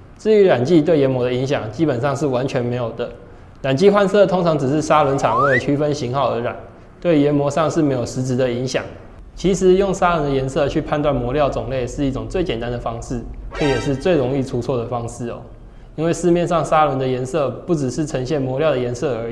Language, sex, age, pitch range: Chinese, male, 20-39, 120-155 Hz